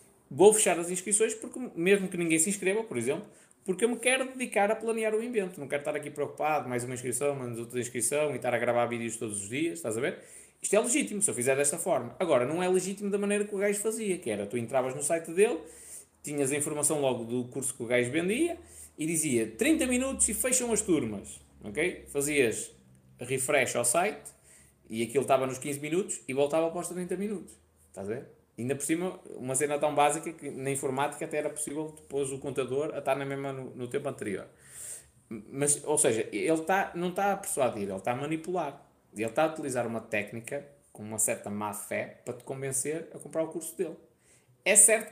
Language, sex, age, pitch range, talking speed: Portuguese, male, 20-39, 130-200 Hz, 215 wpm